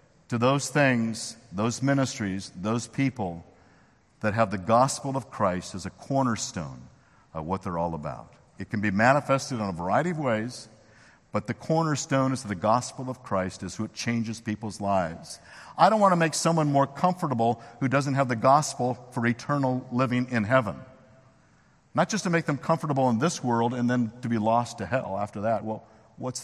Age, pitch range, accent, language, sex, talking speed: 50-69, 100-130 Hz, American, English, male, 185 wpm